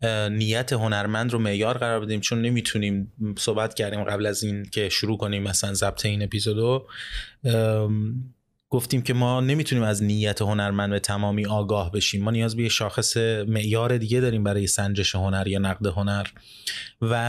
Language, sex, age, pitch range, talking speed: Persian, male, 30-49, 105-125 Hz, 155 wpm